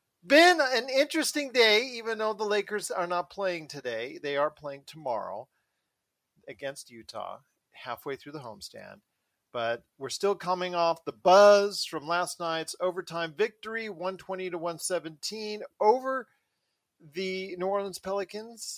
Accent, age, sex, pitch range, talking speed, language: American, 40-59, male, 145-190 Hz, 135 wpm, English